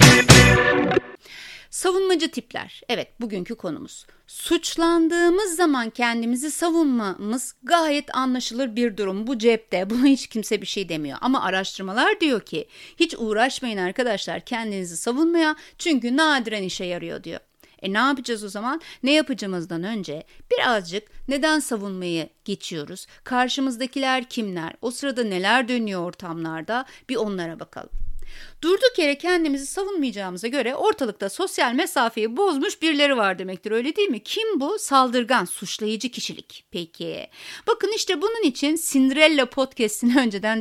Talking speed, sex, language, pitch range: 125 wpm, female, Turkish, 200-310 Hz